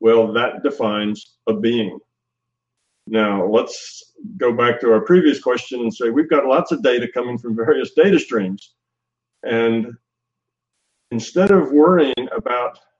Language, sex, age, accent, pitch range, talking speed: English, male, 50-69, American, 110-145 Hz, 140 wpm